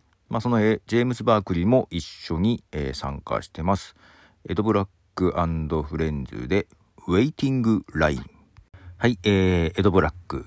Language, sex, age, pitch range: Japanese, male, 50-69, 75-100 Hz